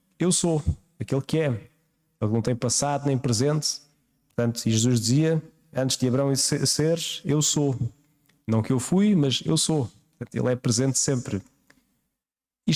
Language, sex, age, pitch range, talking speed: Portuguese, male, 20-39, 120-145 Hz, 155 wpm